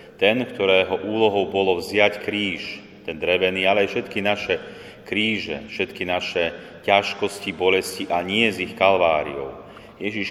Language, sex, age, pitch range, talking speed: Slovak, male, 30-49, 90-100 Hz, 135 wpm